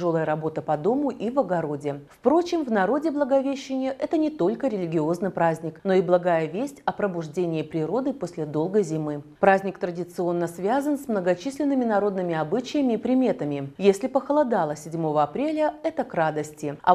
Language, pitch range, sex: Russian, 165-255 Hz, female